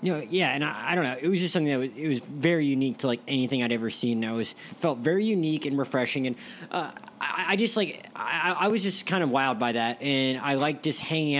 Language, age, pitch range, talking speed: English, 20-39, 125-160 Hz, 265 wpm